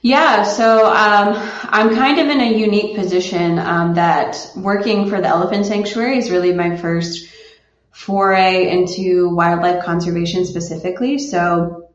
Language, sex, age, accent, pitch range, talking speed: English, female, 20-39, American, 170-210 Hz, 135 wpm